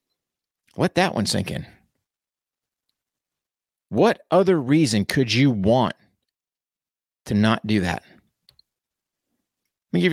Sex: male